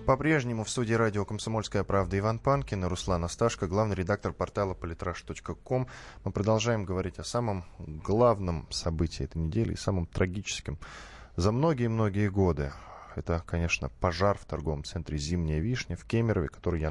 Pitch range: 80-110 Hz